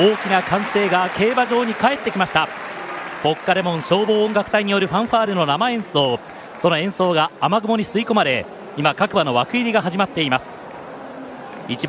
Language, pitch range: Japanese, 135-200 Hz